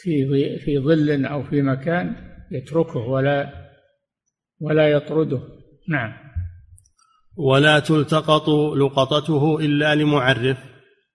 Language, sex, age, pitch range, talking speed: Arabic, male, 50-69, 140-170 Hz, 85 wpm